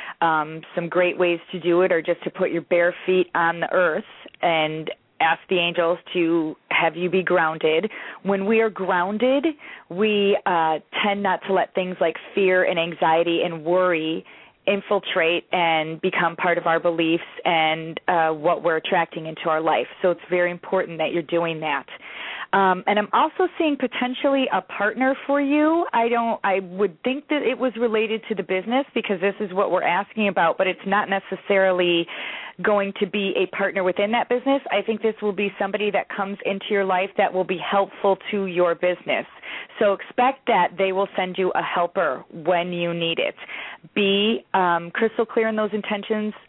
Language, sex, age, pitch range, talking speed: English, female, 30-49, 170-205 Hz, 185 wpm